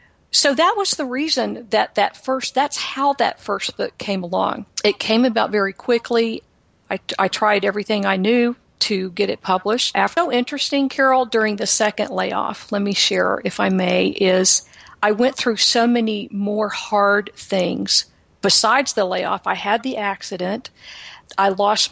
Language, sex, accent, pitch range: English, female, American, 195-235 Hz